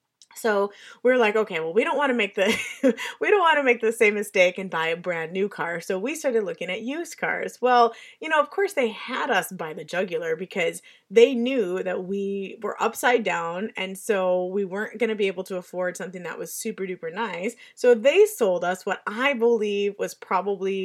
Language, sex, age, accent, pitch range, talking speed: English, female, 30-49, American, 200-275 Hz, 220 wpm